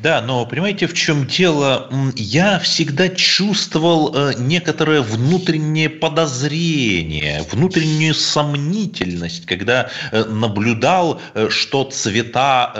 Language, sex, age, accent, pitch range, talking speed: Russian, male, 30-49, native, 115-175 Hz, 85 wpm